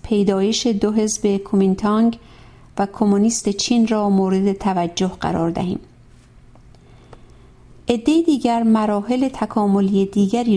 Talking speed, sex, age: 90 wpm, female, 50-69